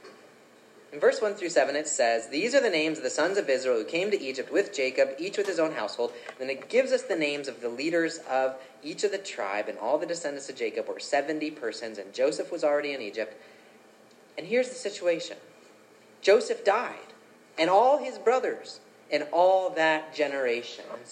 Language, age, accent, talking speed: English, 30-49, American, 205 wpm